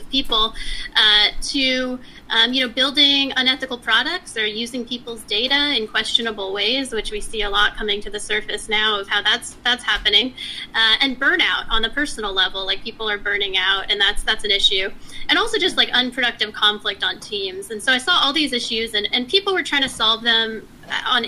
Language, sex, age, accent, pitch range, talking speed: English, female, 20-39, American, 210-260 Hz, 205 wpm